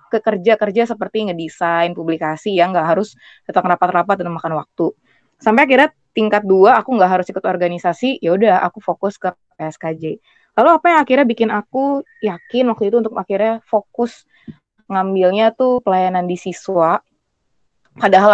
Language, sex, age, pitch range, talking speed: Indonesian, female, 20-39, 175-220 Hz, 145 wpm